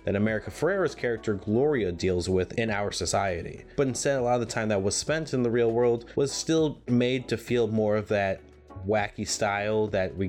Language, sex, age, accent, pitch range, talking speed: English, male, 20-39, American, 95-120 Hz, 210 wpm